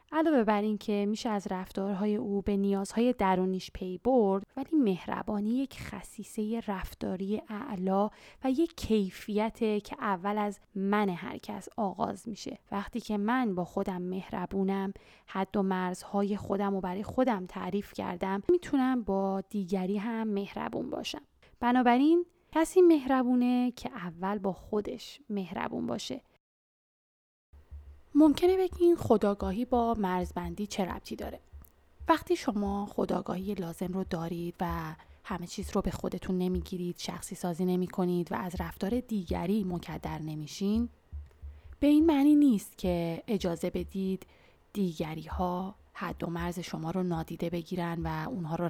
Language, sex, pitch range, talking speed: Persian, female, 180-220 Hz, 135 wpm